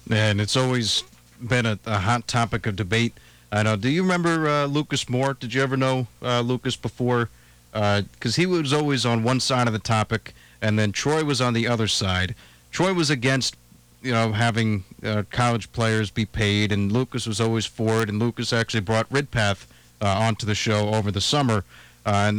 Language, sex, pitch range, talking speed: English, male, 105-125 Hz, 200 wpm